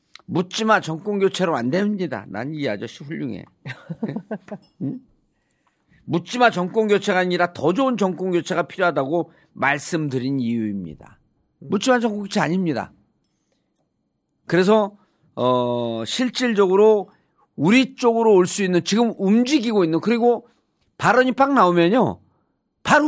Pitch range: 150-205 Hz